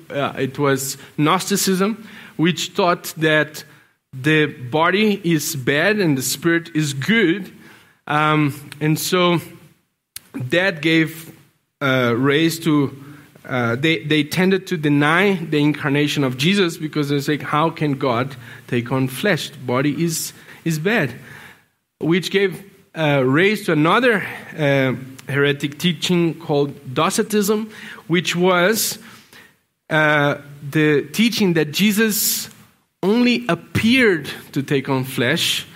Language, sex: English, male